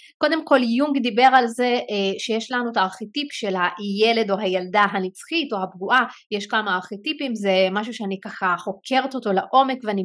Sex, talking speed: female, 165 wpm